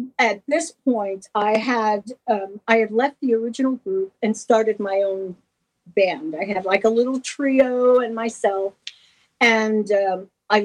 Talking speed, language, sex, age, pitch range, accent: 160 wpm, English, female, 50-69, 200-260 Hz, American